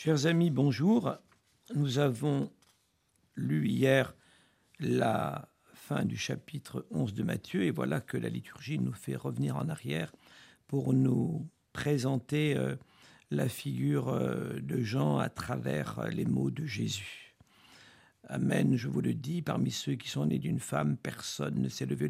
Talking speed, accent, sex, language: 145 wpm, French, male, French